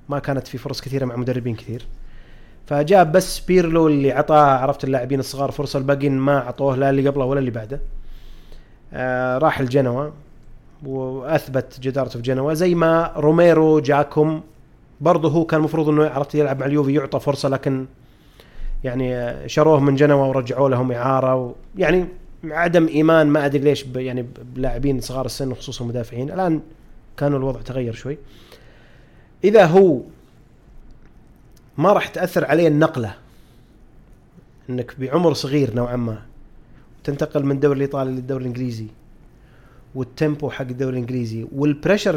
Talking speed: 135 wpm